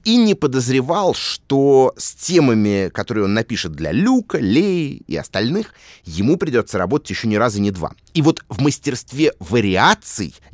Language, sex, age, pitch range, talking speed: Russian, male, 30-49, 100-150 Hz, 155 wpm